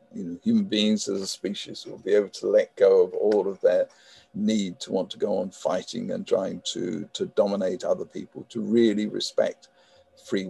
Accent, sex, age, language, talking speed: British, male, 50-69, English, 200 wpm